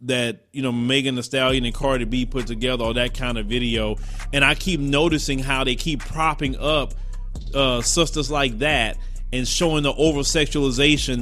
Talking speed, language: 180 wpm, English